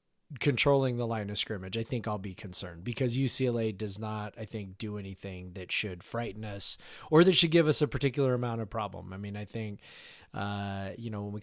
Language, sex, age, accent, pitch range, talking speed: English, male, 20-39, American, 105-130 Hz, 215 wpm